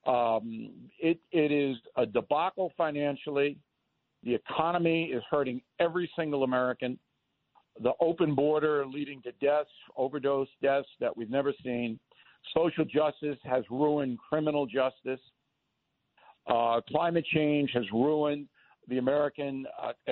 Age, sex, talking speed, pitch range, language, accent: 60-79, male, 120 wpm, 135-165 Hz, English, American